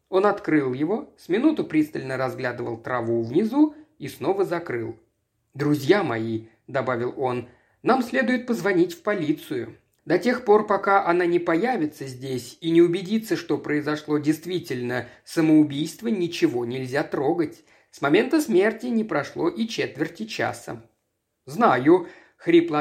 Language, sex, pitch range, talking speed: Russian, male, 140-230 Hz, 130 wpm